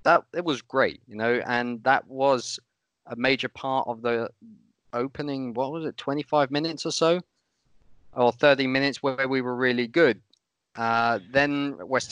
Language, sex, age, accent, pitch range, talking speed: English, male, 20-39, British, 110-140 Hz, 165 wpm